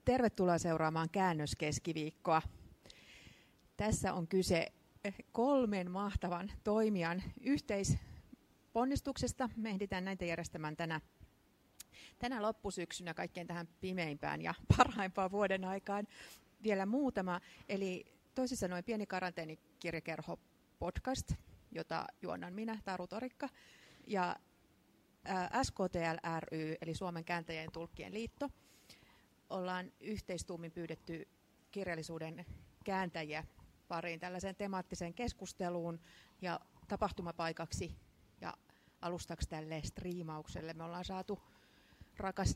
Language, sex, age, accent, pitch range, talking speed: Finnish, female, 30-49, native, 165-205 Hz, 90 wpm